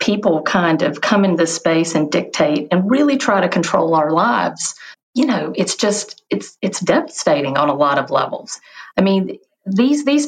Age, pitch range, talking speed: 50-69, 175-255 Hz, 185 wpm